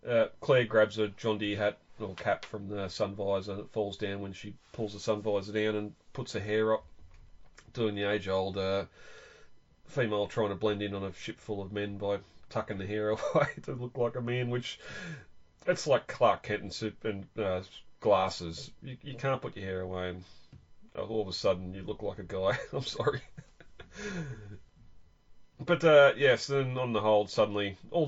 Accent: Australian